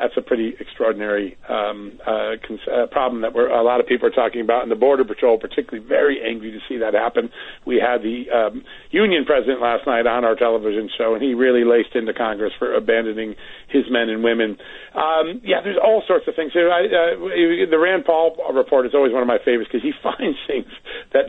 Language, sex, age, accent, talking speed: English, male, 50-69, American, 210 wpm